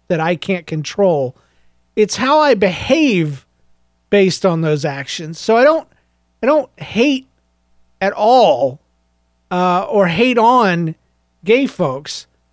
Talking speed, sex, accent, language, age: 125 wpm, male, American, English, 40-59